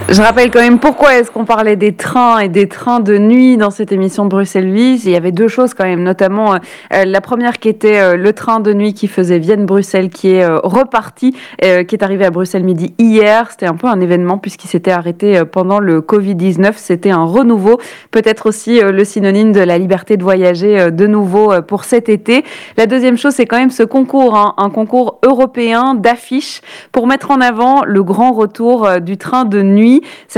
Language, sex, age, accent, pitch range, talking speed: French, female, 20-39, French, 195-240 Hz, 200 wpm